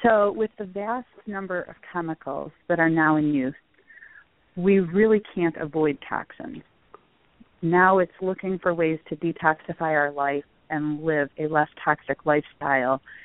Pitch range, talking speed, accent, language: 145-180 Hz, 145 wpm, American, English